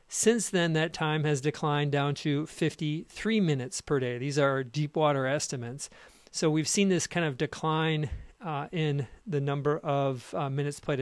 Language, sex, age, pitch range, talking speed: English, male, 50-69, 140-165 Hz, 175 wpm